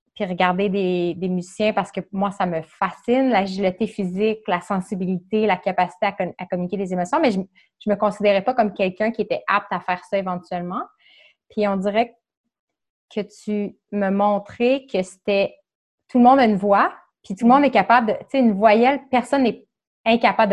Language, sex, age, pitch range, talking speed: French, female, 20-39, 190-240 Hz, 195 wpm